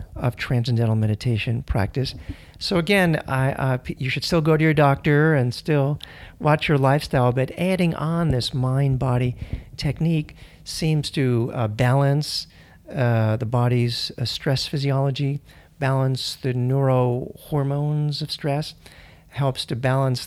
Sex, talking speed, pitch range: male, 135 wpm, 120-150 Hz